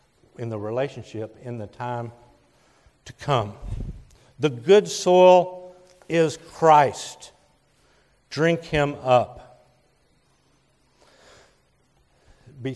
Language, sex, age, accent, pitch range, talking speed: English, male, 50-69, American, 130-185 Hz, 80 wpm